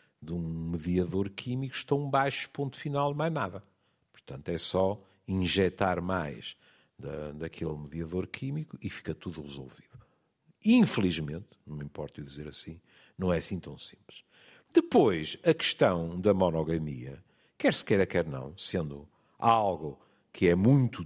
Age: 50-69